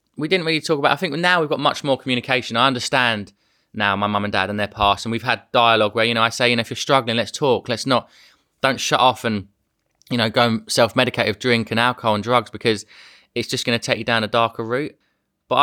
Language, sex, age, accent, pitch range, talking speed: English, male, 20-39, British, 110-130 Hz, 255 wpm